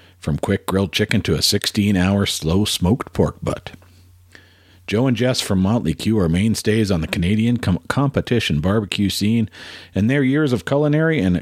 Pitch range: 90-125 Hz